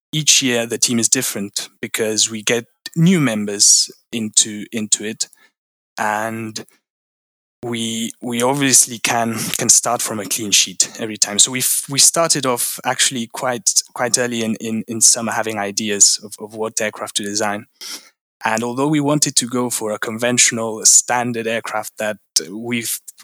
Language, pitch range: English, 110-125 Hz